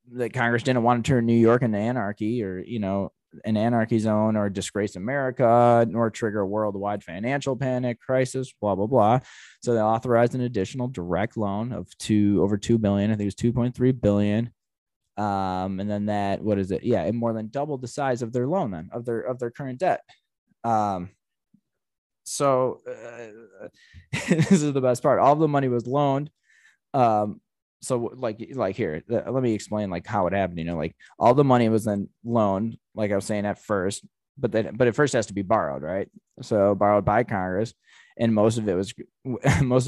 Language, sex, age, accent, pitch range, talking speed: English, male, 20-39, American, 105-125 Hz, 200 wpm